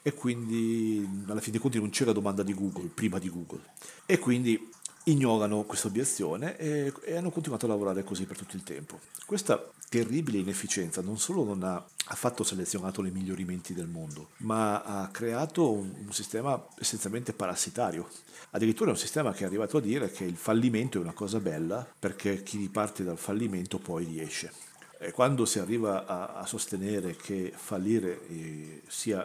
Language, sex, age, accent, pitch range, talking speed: Italian, male, 50-69, native, 95-115 Hz, 170 wpm